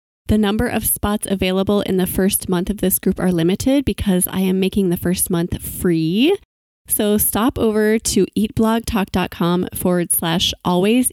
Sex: female